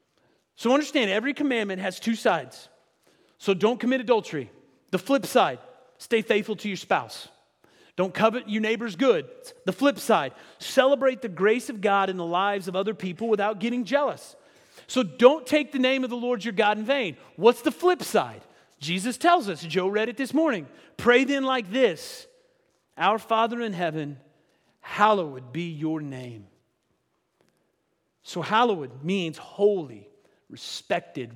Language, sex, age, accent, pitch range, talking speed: English, male, 40-59, American, 160-245 Hz, 155 wpm